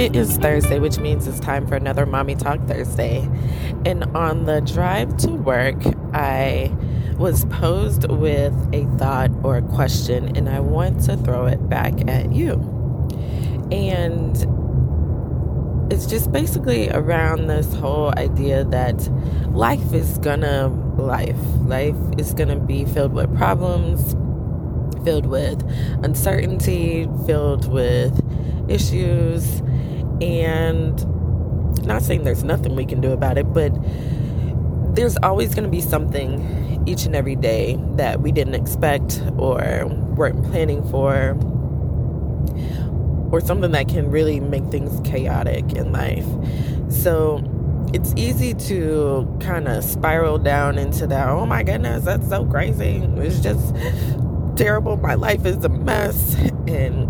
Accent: American